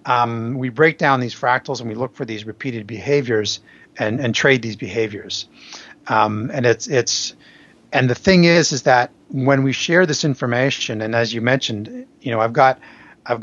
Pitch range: 115-145 Hz